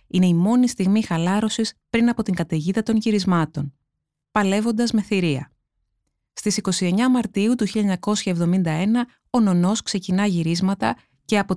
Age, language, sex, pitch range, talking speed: 20-39, Greek, female, 165-215 Hz, 130 wpm